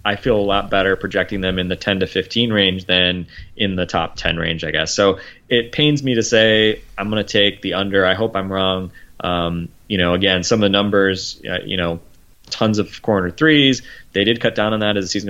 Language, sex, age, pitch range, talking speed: English, male, 20-39, 90-105 Hz, 240 wpm